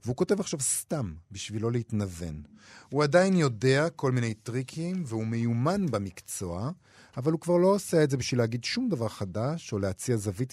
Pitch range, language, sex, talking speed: 110-150 Hz, Hebrew, male, 170 wpm